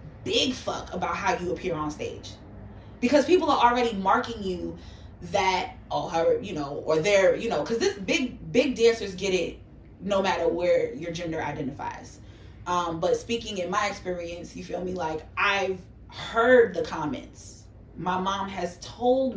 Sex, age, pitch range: female, 20-39, 155-205 Hz